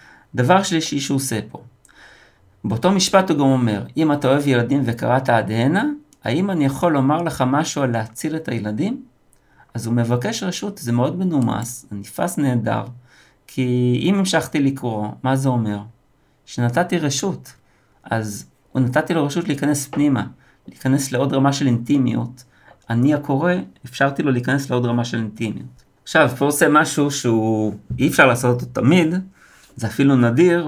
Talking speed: 155 wpm